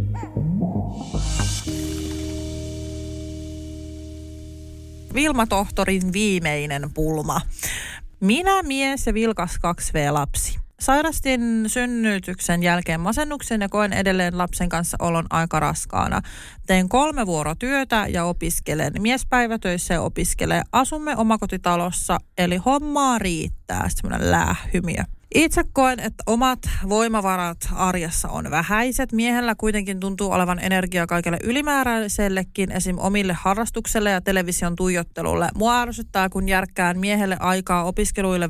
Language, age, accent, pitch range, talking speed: Finnish, 30-49, native, 170-220 Hz, 100 wpm